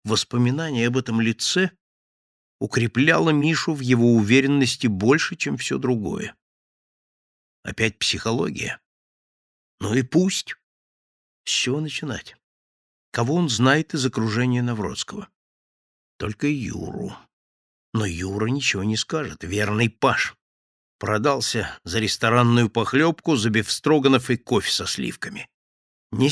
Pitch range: 110-145 Hz